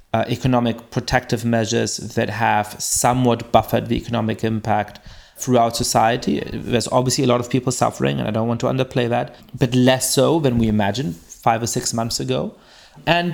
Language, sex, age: English, male, 30-49